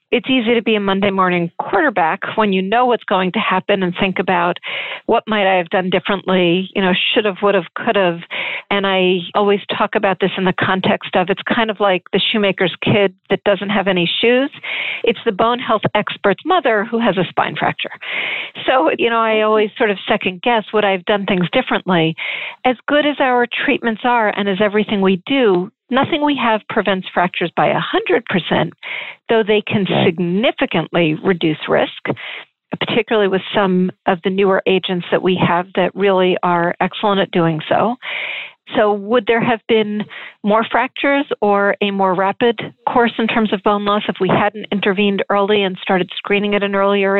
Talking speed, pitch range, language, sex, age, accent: 190 wpm, 190-225 Hz, English, female, 50-69, American